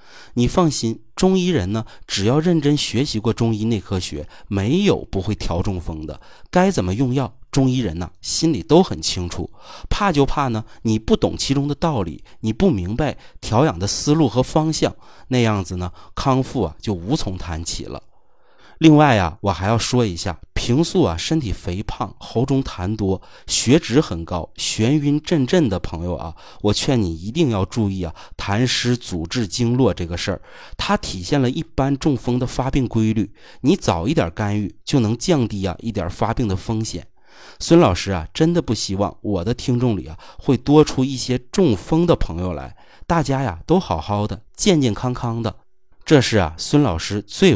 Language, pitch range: Chinese, 95-135 Hz